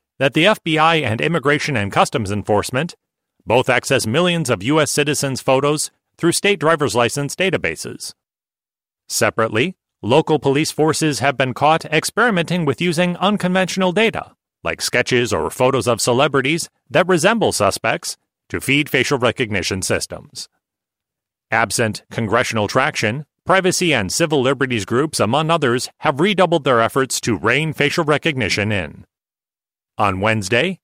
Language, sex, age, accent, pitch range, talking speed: English, male, 40-59, American, 120-160 Hz, 130 wpm